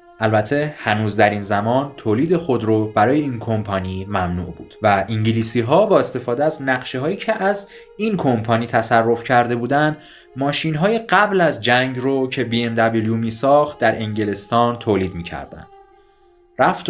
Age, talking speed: 20-39, 140 wpm